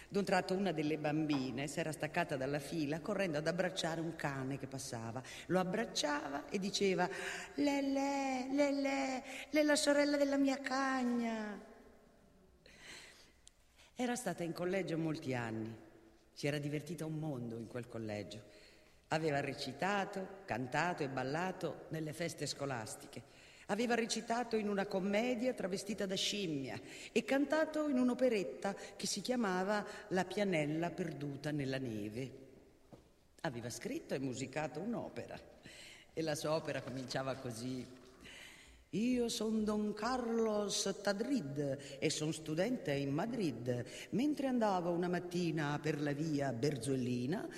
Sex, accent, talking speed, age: female, native, 130 wpm, 50-69